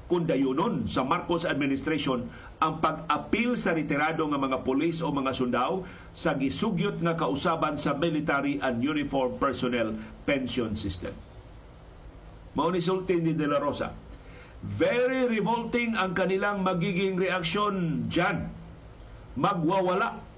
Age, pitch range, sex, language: 50-69, 135-180 Hz, male, Filipino